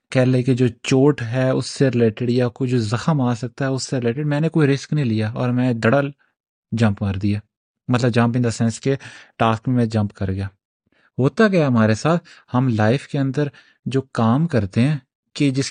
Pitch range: 115-145 Hz